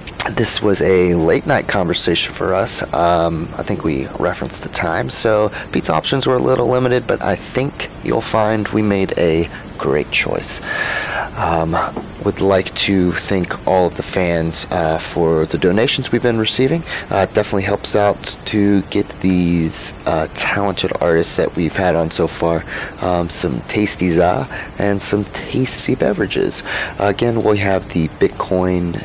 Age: 30-49